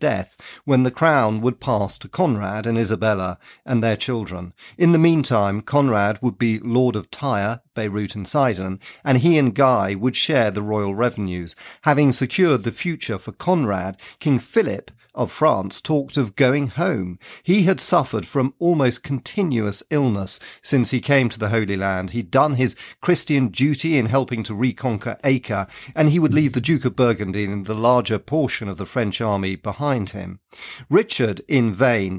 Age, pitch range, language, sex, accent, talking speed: 40-59, 105-140 Hz, English, male, British, 175 wpm